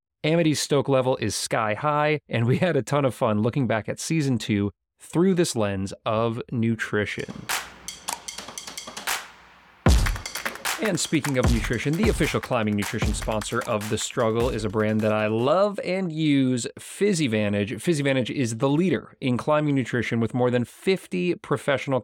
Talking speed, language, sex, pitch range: 160 wpm, English, male, 110-145 Hz